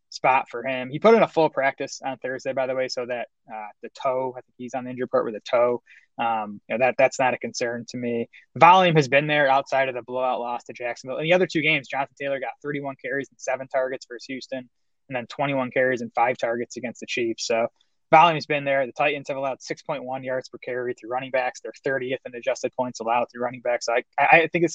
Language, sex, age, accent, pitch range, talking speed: English, male, 20-39, American, 125-145 Hz, 260 wpm